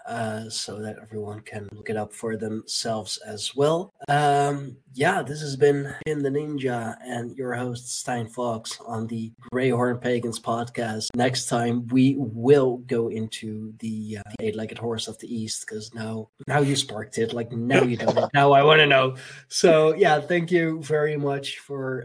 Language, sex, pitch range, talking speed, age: English, male, 110-140 Hz, 180 wpm, 20-39